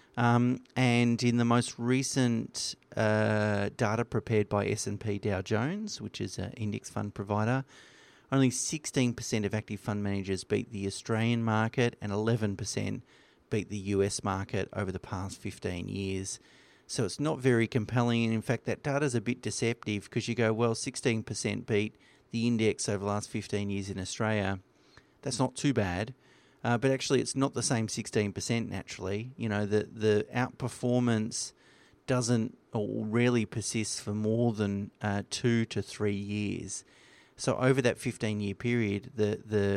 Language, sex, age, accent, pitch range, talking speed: English, male, 40-59, Australian, 105-120 Hz, 160 wpm